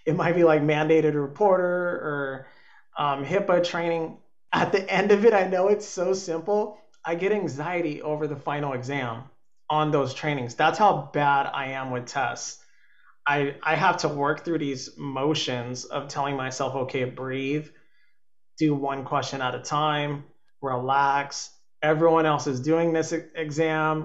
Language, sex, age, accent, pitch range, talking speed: English, male, 30-49, American, 140-165 Hz, 155 wpm